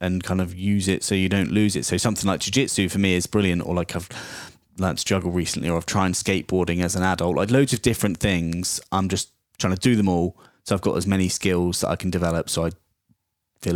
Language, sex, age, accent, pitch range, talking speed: English, male, 20-39, British, 90-100 Hz, 250 wpm